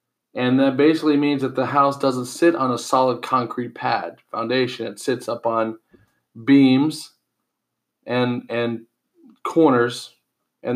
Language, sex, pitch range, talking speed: English, male, 120-150 Hz, 135 wpm